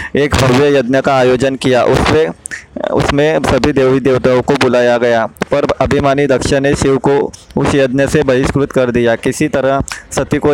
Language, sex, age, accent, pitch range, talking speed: Hindi, male, 20-39, native, 130-145 Hz, 165 wpm